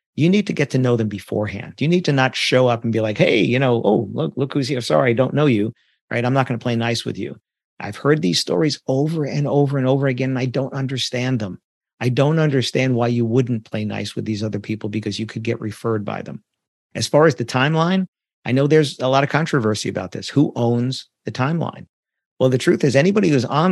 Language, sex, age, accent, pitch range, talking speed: English, male, 50-69, American, 115-140 Hz, 250 wpm